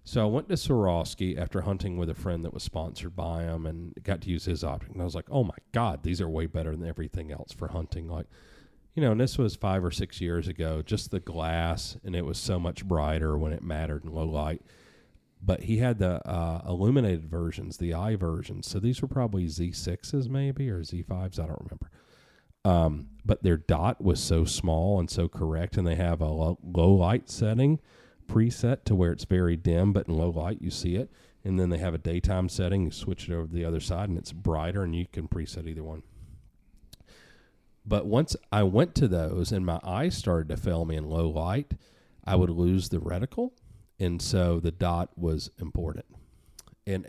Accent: American